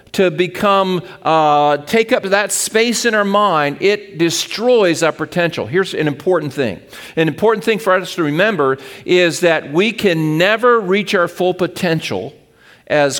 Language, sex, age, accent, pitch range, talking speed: English, male, 50-69, American, 155-215 Hz, 160 wpm